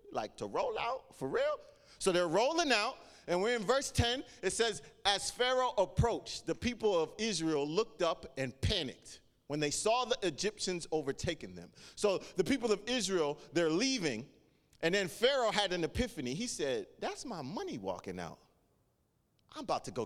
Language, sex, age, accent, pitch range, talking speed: English, male, 40-59, American, 145-240 Hz, 175 wpm